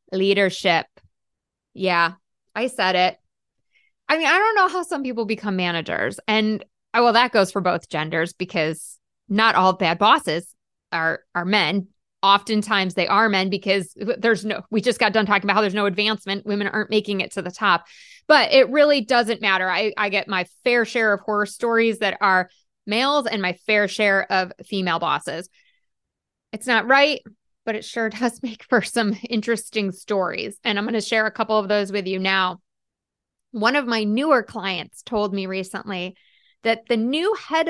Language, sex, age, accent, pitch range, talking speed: English, female, 20-39, American, 195-280 Hz, 180 wpm